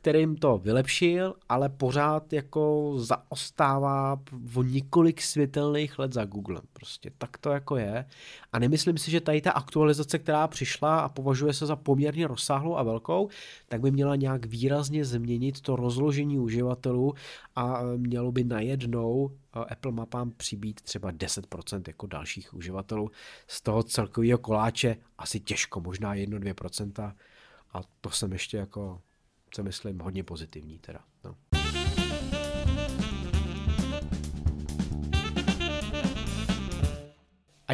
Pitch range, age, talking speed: 105-145 Hz, 30-49, 120 wpm